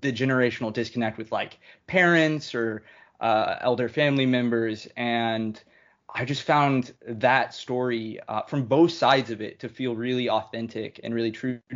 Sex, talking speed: male, 155 wpm